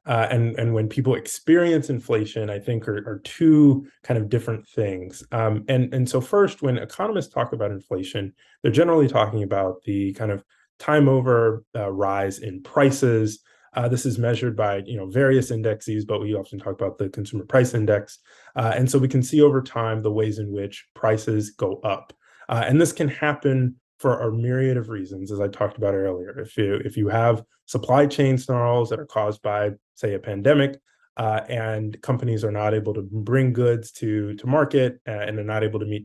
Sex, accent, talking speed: male, American, 200 wpm